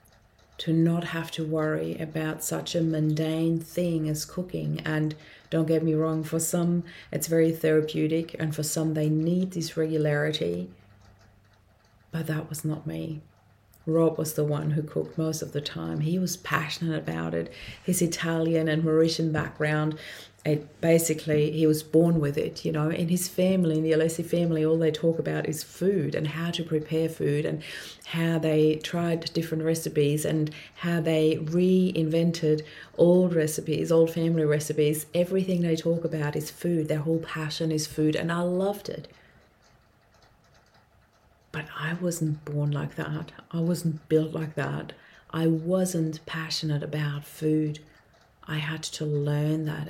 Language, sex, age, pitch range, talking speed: English, female, 30-49, 150-165 Hz, 160 wpm